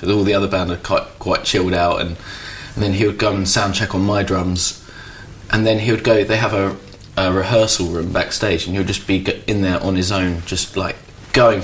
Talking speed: 235 wpm